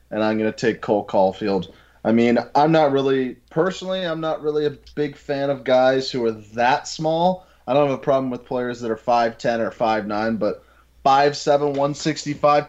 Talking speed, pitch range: 195 wpm, 110-140 Hz